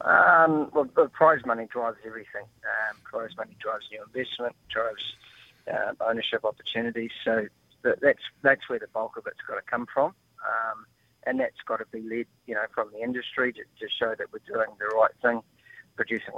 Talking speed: 185 wpm